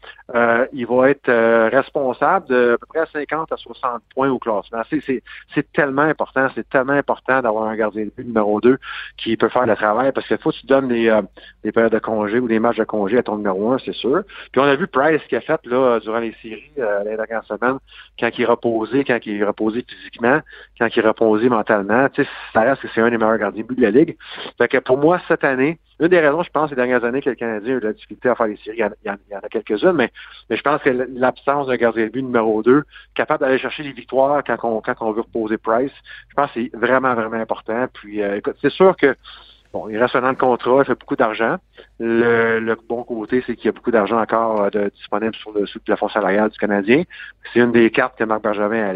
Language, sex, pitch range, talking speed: French, male, 110-130 Hz, 250 wpm